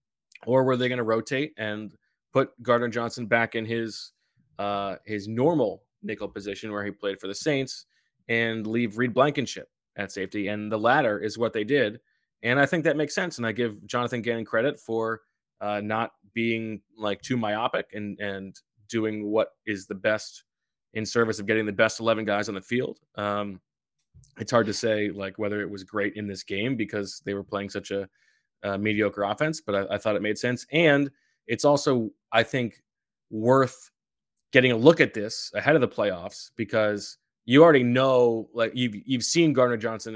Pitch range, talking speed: 105-120 Hz, 195 wpm